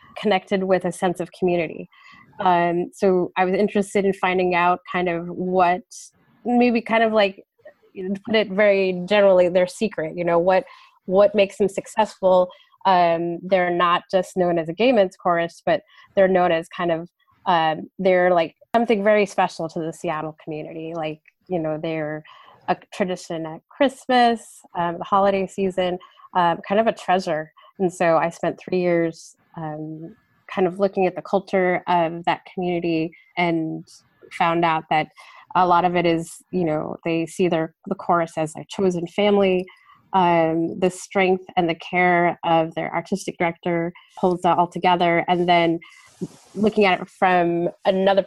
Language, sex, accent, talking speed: English, female, American, 170 wpm